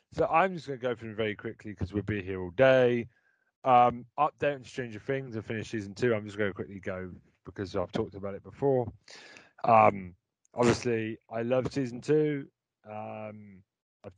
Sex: male